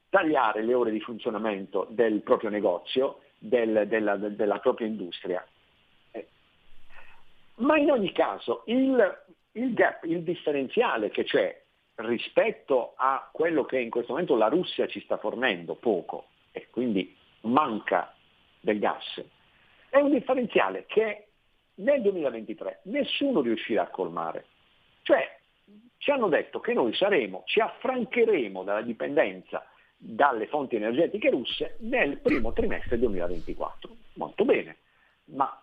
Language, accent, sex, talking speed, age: Italian, native, male, 120 wpm, 50-69